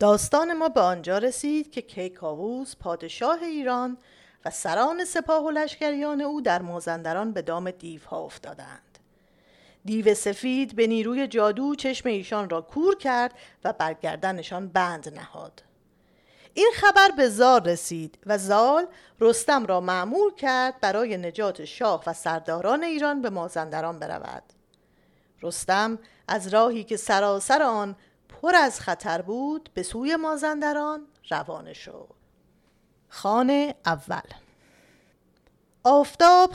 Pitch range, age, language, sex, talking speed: 185-290 Hz, 40-59, Persian, female, 115 wpm